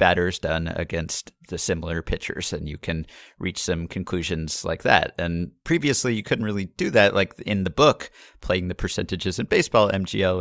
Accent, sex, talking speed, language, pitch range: American, male, 180 wpm, English, 85-100 Hz